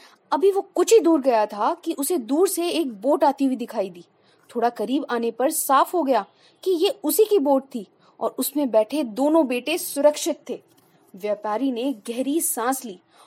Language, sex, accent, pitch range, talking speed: Hindi, female, native, 220-310 Hz, 115 wpm